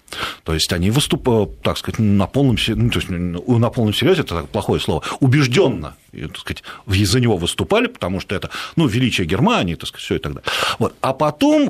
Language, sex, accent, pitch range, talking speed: Russian, male, native, 105-155 Hz, 200 wpm